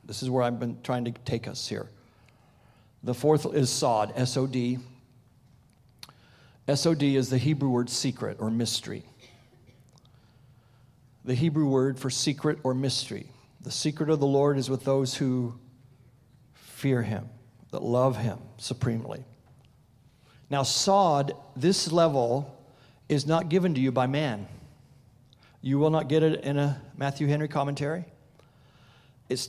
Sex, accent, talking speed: male, American, 135 wpm